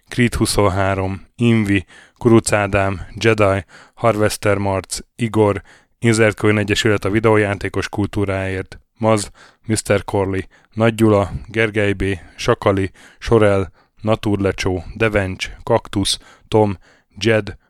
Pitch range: 95-110 Hz